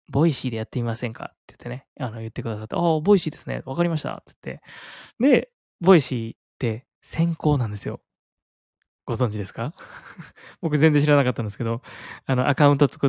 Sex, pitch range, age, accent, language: male, 120-170 Hz, 20-39, native, Japanese